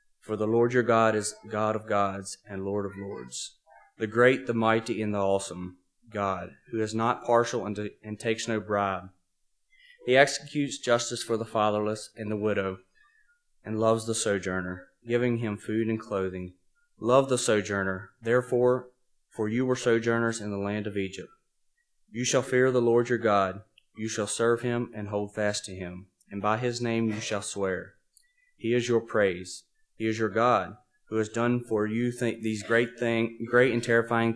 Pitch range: 100-120 Hz